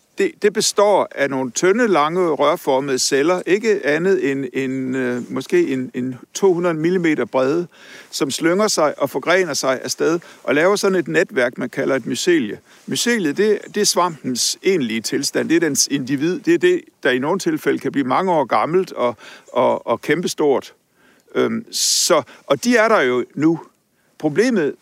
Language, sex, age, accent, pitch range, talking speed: Danish, male, 60-79, native, 145-225 Hz, 175 wpm